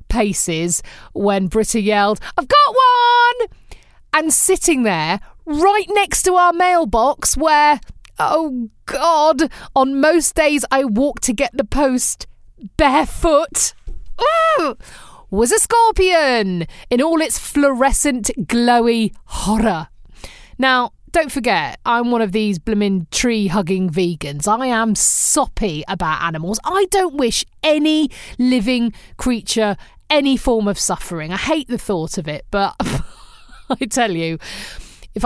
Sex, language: female, English